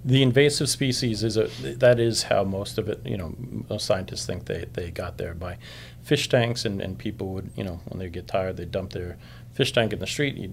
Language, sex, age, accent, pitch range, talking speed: English, male, 40-59, American, 95-120 Hz, 240 wpm